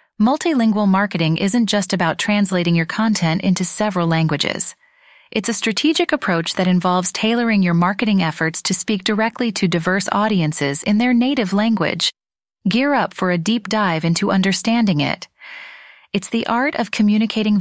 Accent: American